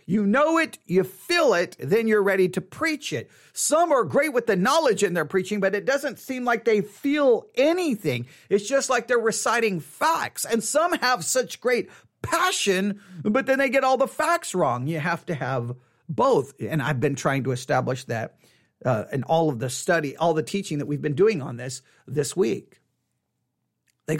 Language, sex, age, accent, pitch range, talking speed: English, male, 40-59, American, 150-255 Hz, 195 wpm